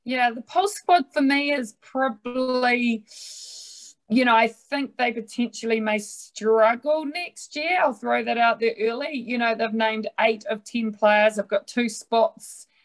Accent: Australian